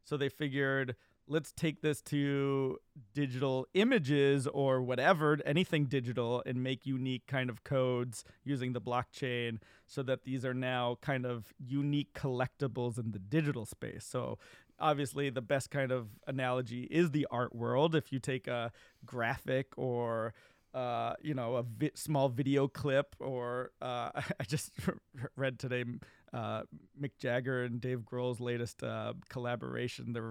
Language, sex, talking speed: English, male, 150 wpm